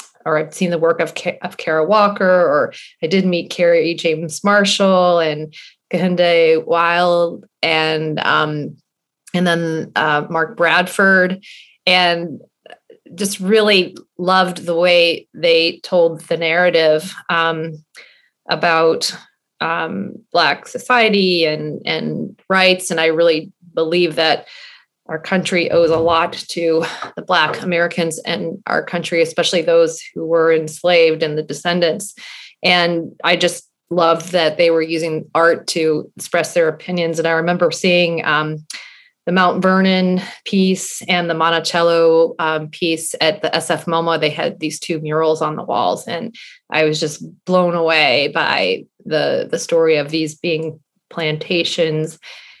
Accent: American